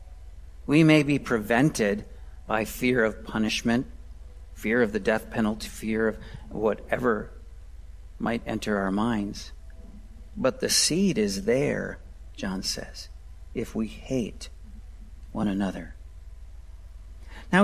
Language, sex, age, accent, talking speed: English, male, 50-69, American, 110 wpm